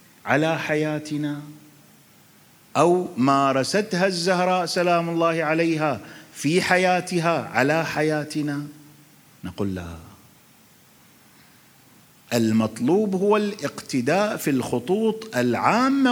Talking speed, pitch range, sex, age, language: 75 wpm, 140-200 Hz, male, 40-59, Arabic